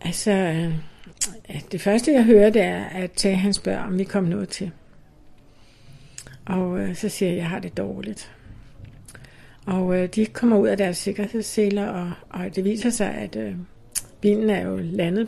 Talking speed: 180 wpm